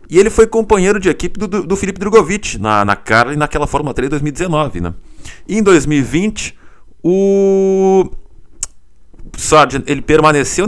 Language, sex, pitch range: Portuguese, male, 110-155 Hz